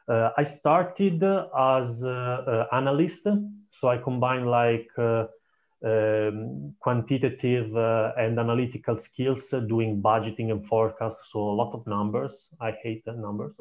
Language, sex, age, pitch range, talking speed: English, male, 30-49, 110-130 Hz, 150 wpm